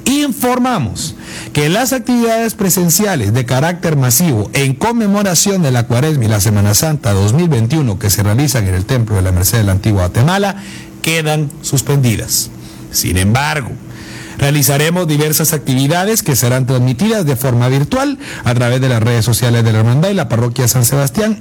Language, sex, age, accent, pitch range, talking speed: Spanish, male, 50-69, Mexican, 115-160 Hz, 160 wpm